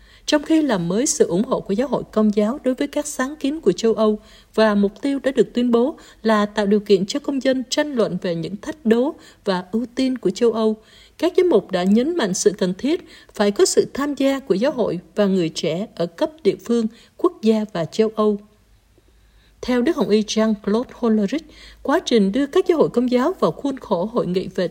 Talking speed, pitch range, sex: 230 wpm, 205-280 Hz, female